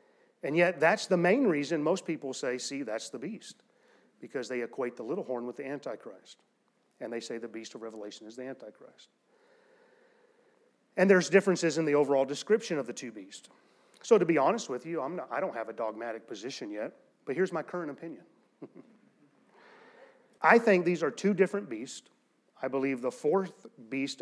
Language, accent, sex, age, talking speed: English, American, male, 30-49, 185 wpm